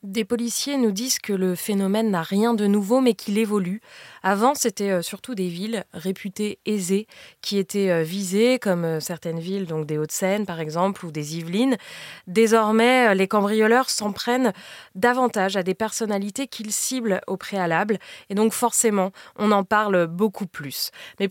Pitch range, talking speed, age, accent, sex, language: 185-220 Hz, 160 wpm, 20-39, French, female, French